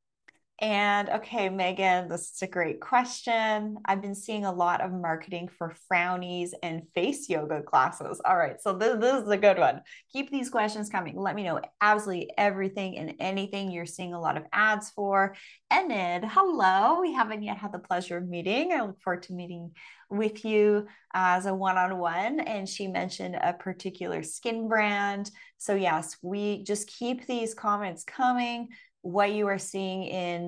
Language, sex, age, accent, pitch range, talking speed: English, female, 20-39, American, 180-220 Hz, 175 wpm